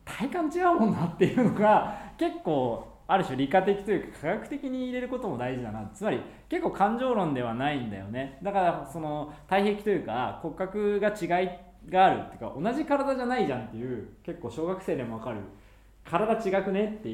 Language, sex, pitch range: Japanese, male, 125-195 Hz